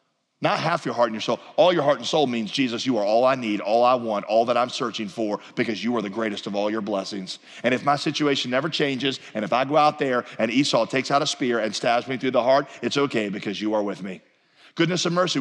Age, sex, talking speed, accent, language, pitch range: 40-59, male, 275 wpm, American, English, 130-200 Hz